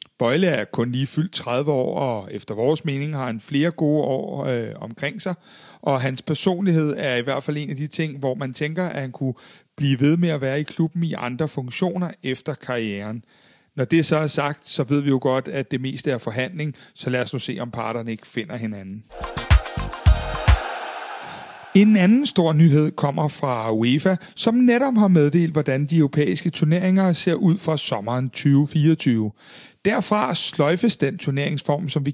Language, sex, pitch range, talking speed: Danish, male, 135-175 Hz, 185 wpm